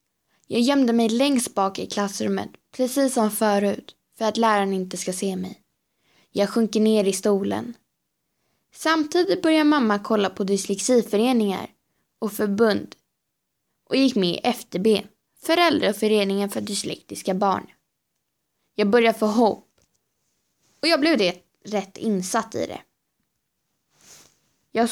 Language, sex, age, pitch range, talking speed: Swedish, female, 20-39, 200-240 Hz, 125 wpm